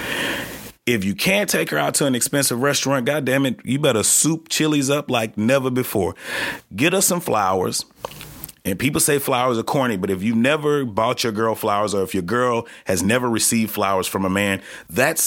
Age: 30-49